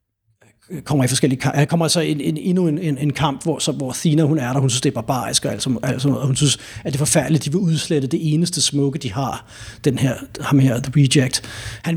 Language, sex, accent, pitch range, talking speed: Danish, male, native, 120-160 Hz, 250 wpm